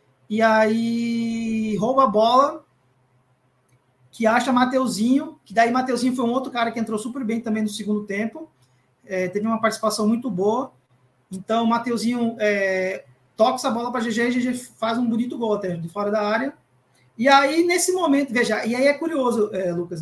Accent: Brazilian